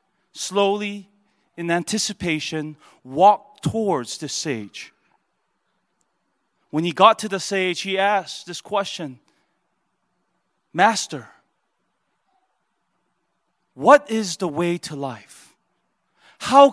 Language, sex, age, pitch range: Korean, male, 30-49, 135-195 Hz